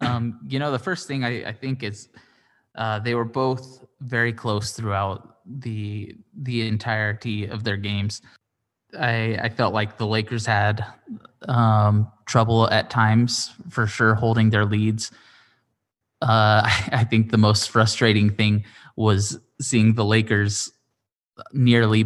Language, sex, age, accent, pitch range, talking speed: English, male, 20-39, American, 105-115 Hz, 140 wpm